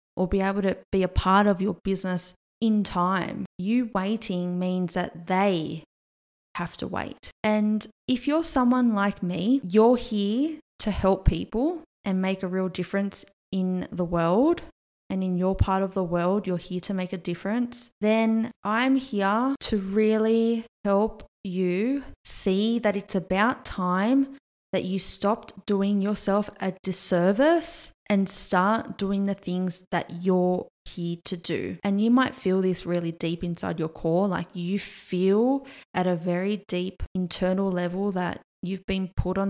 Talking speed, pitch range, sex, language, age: 160 wpm, 185-225 Hz, female, English, 20-39